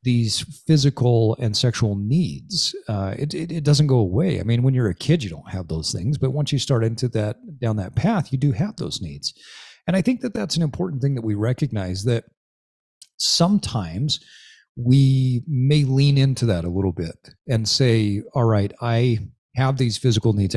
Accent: American